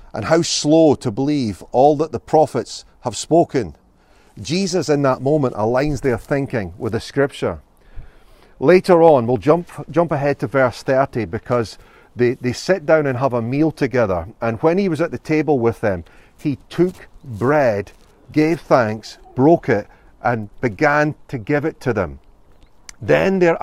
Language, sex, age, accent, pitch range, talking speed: English, male, 40-59, British, 115-150 Hz, 165 wpm